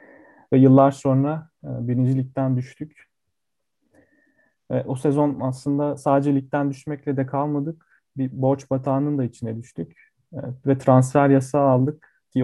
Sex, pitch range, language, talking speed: male, 130-150 Hz, Turkish, 115 wpm